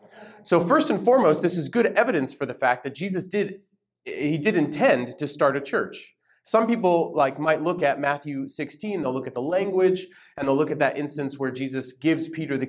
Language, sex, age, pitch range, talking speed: English, male, 30-49, 135-185 Hz, 215 wpm